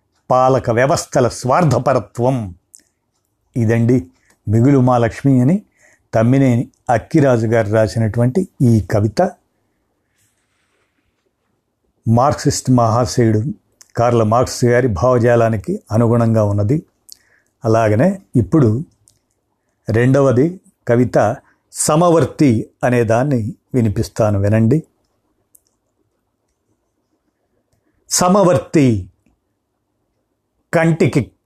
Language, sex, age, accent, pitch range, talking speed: Telugu, male, 50-69, native, 115-155 Hz, 60 wpm